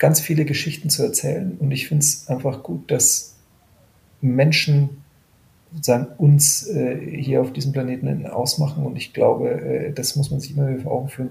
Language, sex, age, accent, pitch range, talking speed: German, male, 40-59, German, 130-150 Hz, 175 wpm